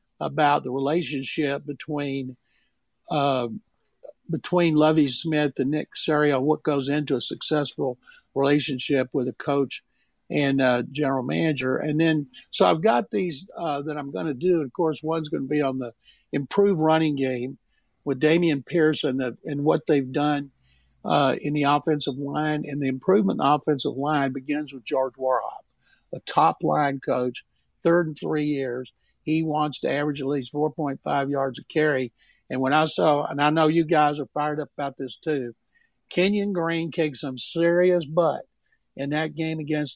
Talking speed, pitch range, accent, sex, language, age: 170 wpm, 135-155 Hz, American, male, English, 50-69